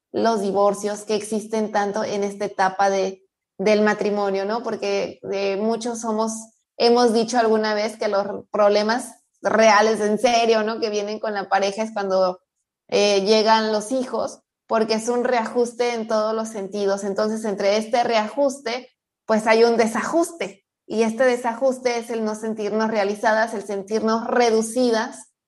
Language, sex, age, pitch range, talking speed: Spanish, female, 20-39, 205-230 Hz, 155 wpm